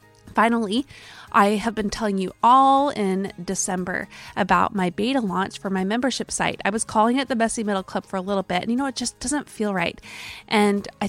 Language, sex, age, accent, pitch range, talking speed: English, female, 20-39, American, 185-220 Hz, 210 wpm